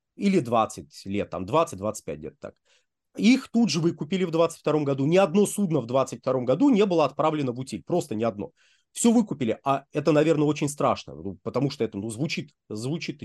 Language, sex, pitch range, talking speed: Russian, male, 130-190 Hz, 180 wpm